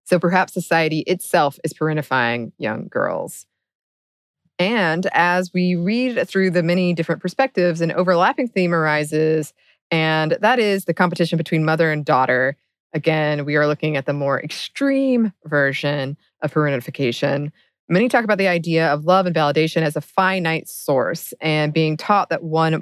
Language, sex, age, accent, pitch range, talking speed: English, female, 20-39, American, 155-190 Hz, 155 wpm